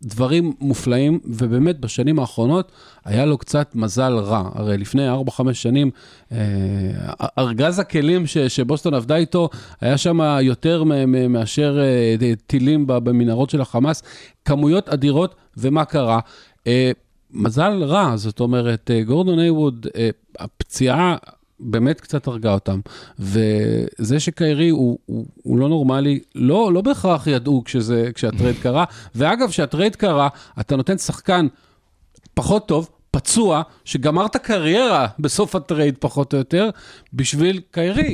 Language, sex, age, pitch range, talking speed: Hebrew, male, 40-59, 120-165 Hz, 120 wpm